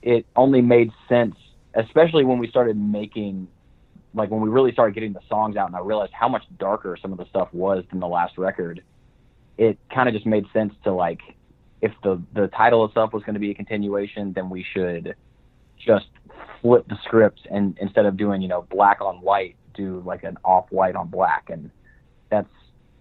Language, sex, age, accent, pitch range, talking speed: English, male, 30-49, American, 95-120 Hz, 200 wpm